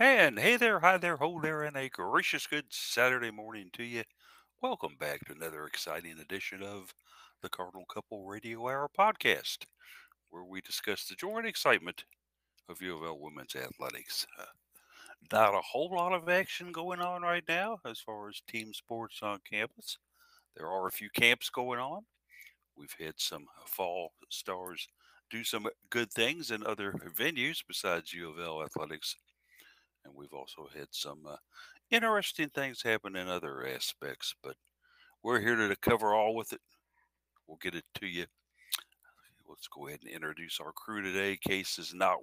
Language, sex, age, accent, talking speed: English, male, 60-79, American, 165 wpm